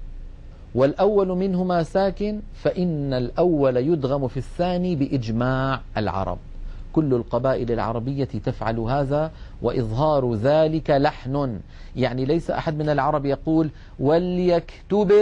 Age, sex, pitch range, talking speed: 40-59, male, 125-170 Hz, 100 wpm